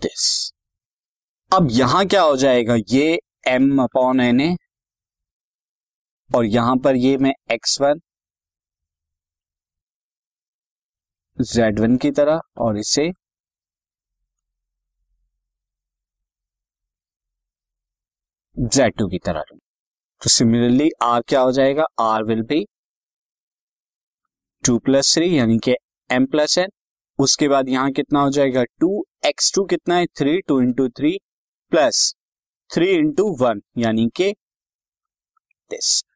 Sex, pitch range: male, 115-150 Hz